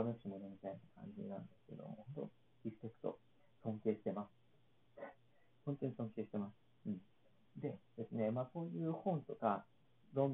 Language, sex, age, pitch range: Japanese, male, 40-59, 115-175 Hz